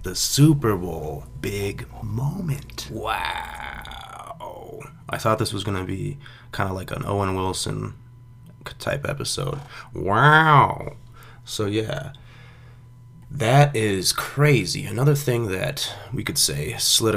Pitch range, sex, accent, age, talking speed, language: 110-140 Hz, male, American, 20-39, 120 wpm, English